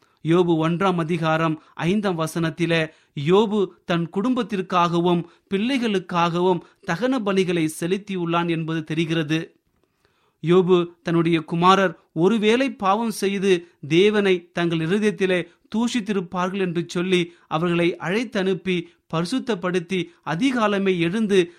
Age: 30-49